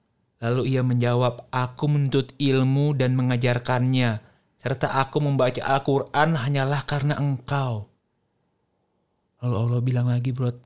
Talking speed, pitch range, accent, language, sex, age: 115 wpm, 125-155 Hz, native, Indonesian, male, 30-49